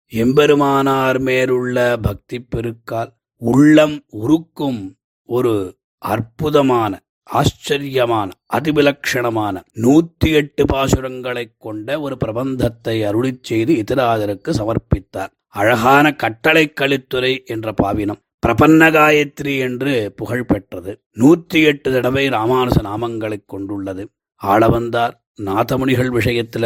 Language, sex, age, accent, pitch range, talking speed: Tamil, male, 30-49, native, 110-130 Hz, 80 wpm